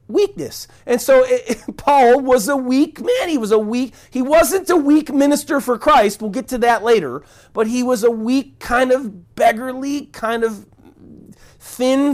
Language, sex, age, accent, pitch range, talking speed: English, male, 40-59, American, 160-250 Hz, 185 wpm